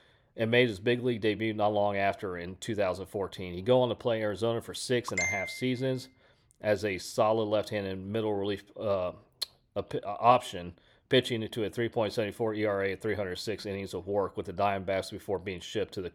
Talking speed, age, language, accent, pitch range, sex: 190 wpm, 40-59, English, American, 100-115 Hz, male